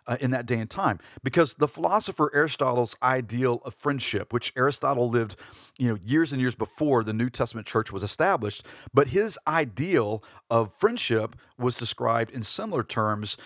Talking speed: 170 wpm